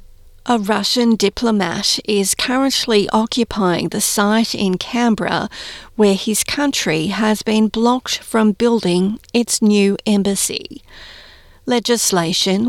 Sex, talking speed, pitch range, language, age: female, 105 wpm, 190-225 Hz, English, 40-59